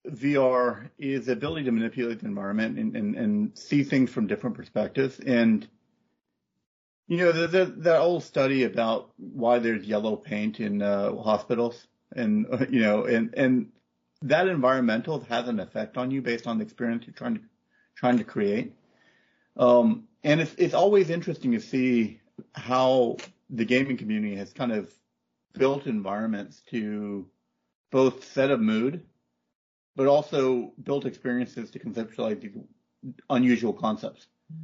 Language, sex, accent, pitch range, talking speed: English, male, American, 110-145 Hz, 145 wpm